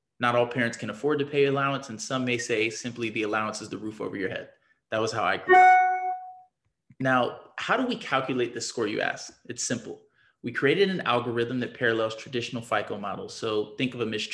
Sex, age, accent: male, 20-39, American